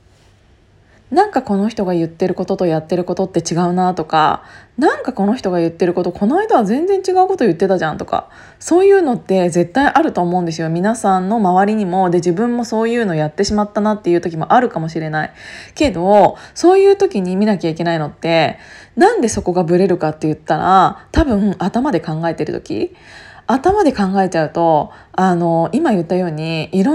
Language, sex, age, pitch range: Japanese, female, 20-39, 175-265 Hz